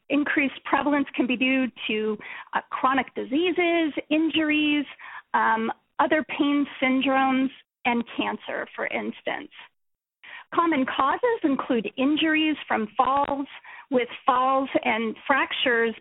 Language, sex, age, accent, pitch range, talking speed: English, female, 40-59, American, 245-310 Hz, 105 wpm